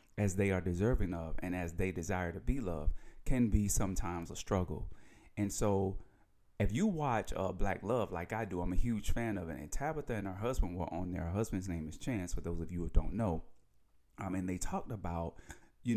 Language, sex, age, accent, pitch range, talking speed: English, male, 30-49, American, 90-110 Hz, 225 wpm